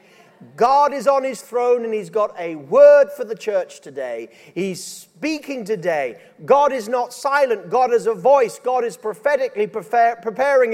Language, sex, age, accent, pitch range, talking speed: English, male, 40-59, British, 230-275 Hz, 170 wpm